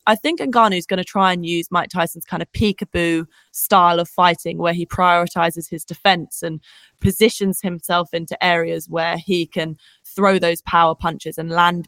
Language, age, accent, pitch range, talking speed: English, 20-39, British, 175-245 Hz, 175 wpm